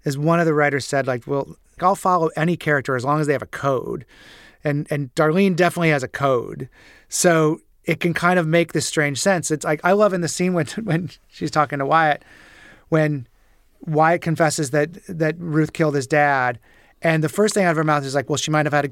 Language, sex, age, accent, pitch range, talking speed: English, male, 30-49, American, 145-180 Hz, 230 wpm